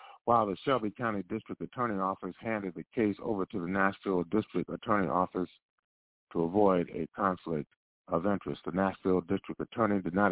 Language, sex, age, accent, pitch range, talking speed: English, male, 50-69, American, 90-115 Hz, 170 wpm